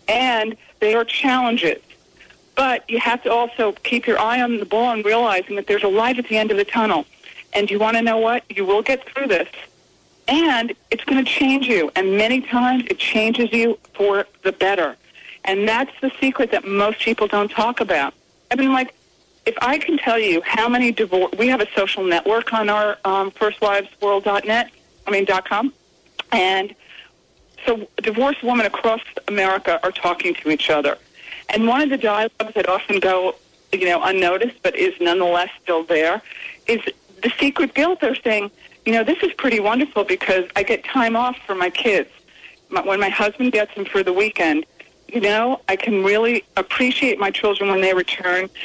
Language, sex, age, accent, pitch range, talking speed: English, female, 40-59, American, 200-245 Hz, 185 wpm